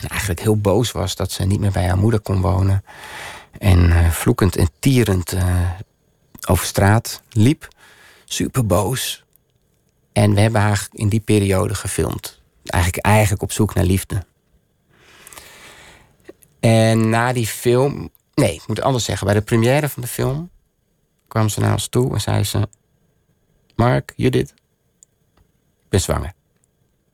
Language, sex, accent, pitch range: Dutch, male, Dutch, 100-115 Hz